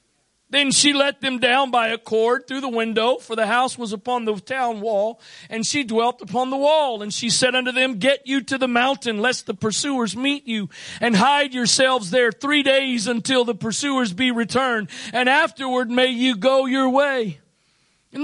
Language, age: English, 50-69